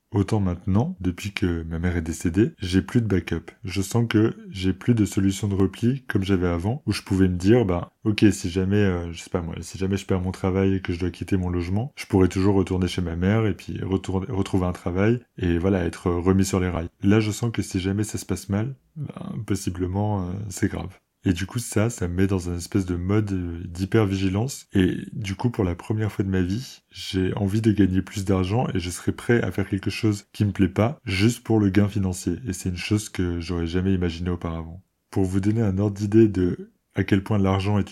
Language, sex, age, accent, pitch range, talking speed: French, male, 20-39, French, 95-105 Hz, 245 wpm